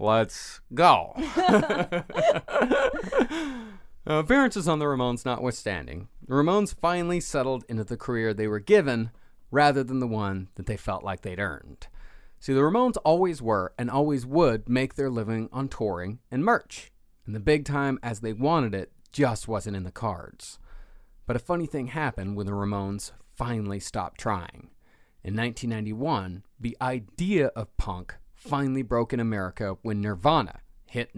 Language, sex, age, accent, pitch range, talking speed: English, male, 30-49, American, 100-135 Hz, 150 wpm